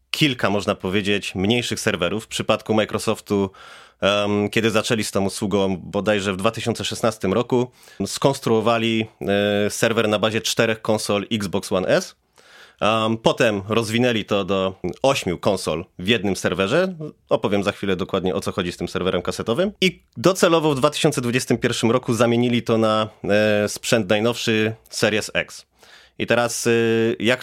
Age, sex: 30-49, male